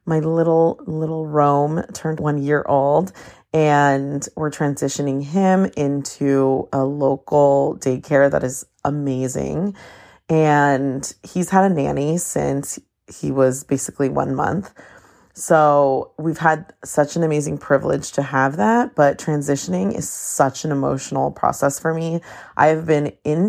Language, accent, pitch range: English, American, 140-160 Hz